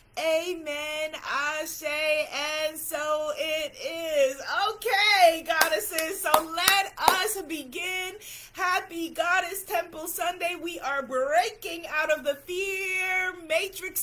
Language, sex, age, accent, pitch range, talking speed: English, female, 30-49, American, 305-370 Hz, 105 wpm